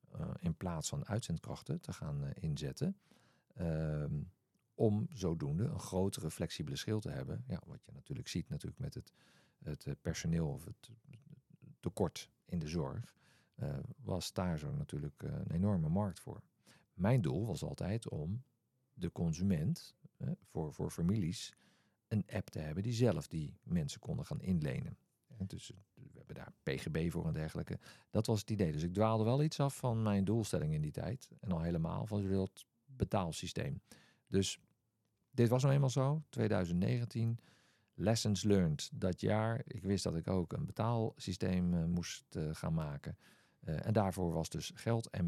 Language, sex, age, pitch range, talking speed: Dutch, male, 50-69, 95-145 Hz, 165 wpm